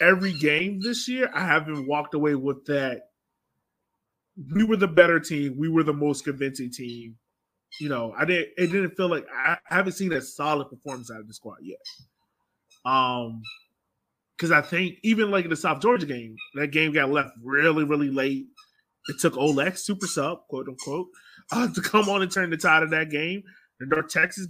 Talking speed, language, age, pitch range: 195 wpm, English, 30-49, 135-180 Hz